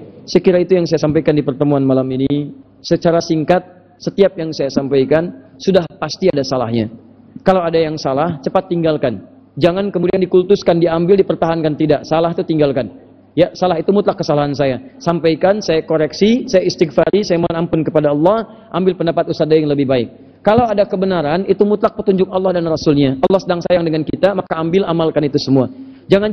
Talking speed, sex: 175 wpm, male